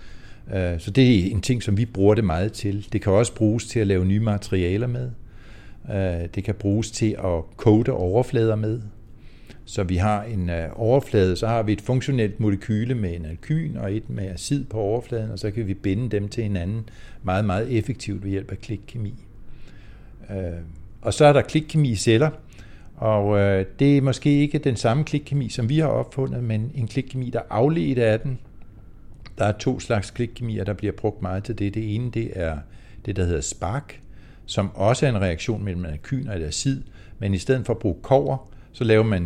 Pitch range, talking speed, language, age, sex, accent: 100-120 Hz, 200 wpm, Danish, 60-79, male, native